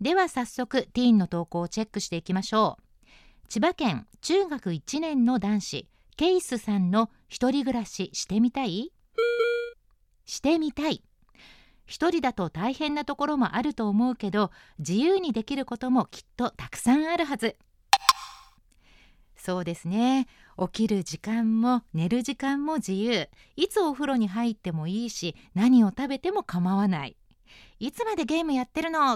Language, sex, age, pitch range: Japanese, female, 40-59, 195-285 Hz